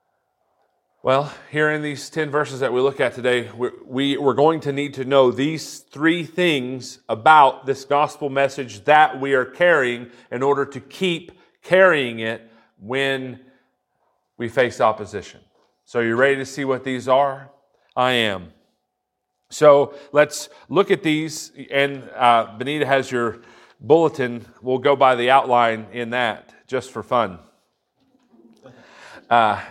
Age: 40-59